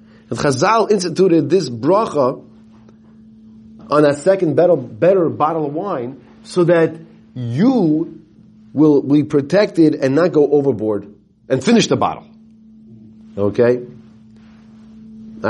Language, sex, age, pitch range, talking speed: English, male, 40-59, 115-150 Hz, 110 wpm